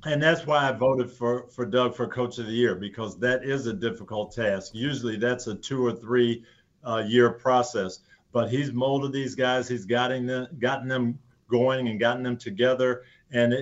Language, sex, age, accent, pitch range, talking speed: English, male, 50-69, American, 120-130 Hz, 195 wpm